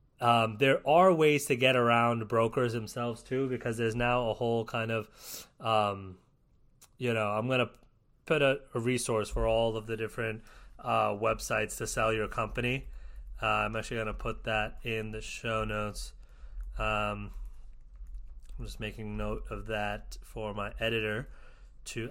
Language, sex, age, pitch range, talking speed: English, male, 30-49, 110-125 Hz, 165 wpm